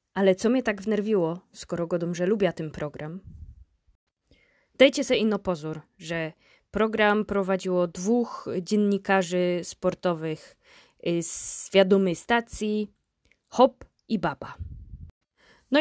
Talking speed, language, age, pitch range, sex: 105 wpm, Polish, 20-39, 175-220 Hz, female